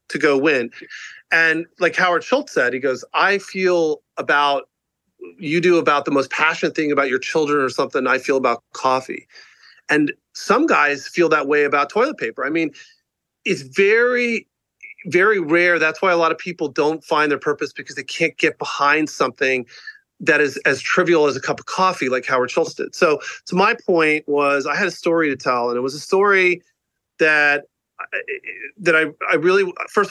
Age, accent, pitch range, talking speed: 40-59, American, 145-185 Hz, 190 wpm